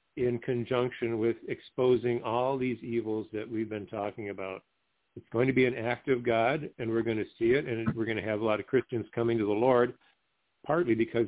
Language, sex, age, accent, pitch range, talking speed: English, male, 50-69, American, 105-125 Hz, 220 wpm